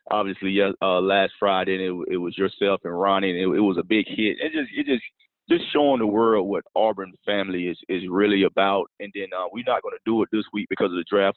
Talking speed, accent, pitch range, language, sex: 255 wpm, American, 95-115 Hz, English, male